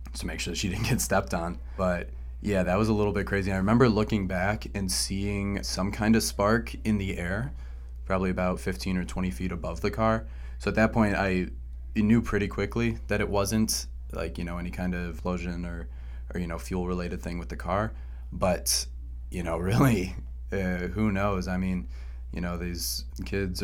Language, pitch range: English, 80-100 Hz